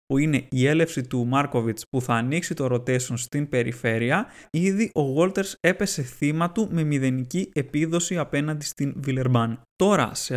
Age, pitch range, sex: 20-39, 125-160 Hz, male